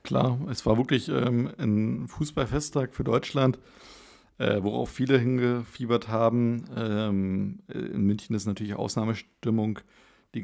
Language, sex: German, male